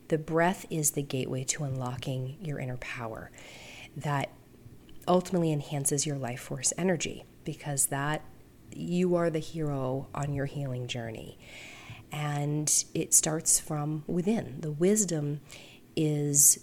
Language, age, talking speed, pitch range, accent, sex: English, 30-49, 125 wpm, 145-170 Hz, American, female